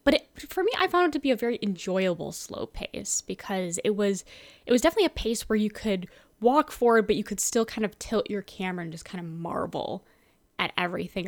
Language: English